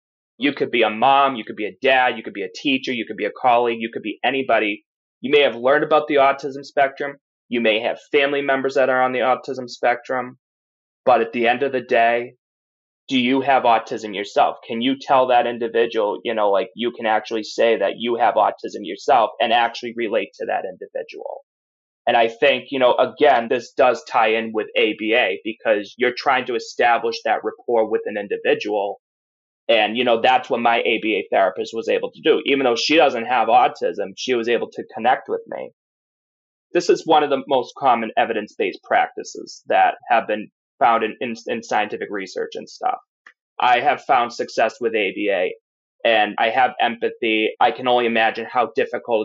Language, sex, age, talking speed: English, male, 20-39, 195 wpm